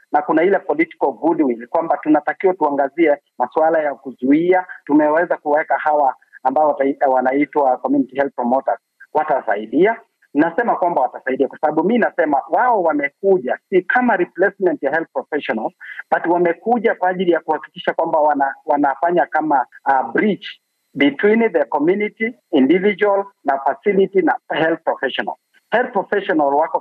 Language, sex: Swahili, male